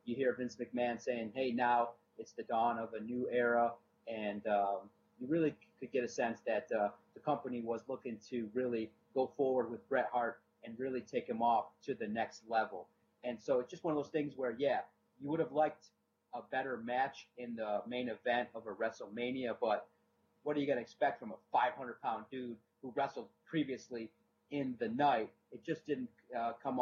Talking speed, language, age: 200 wpm, English, 30-49